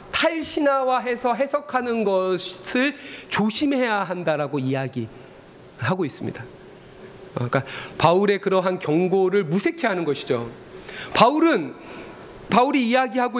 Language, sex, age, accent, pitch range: Korean, male, 40-59, native, 180-260 Hz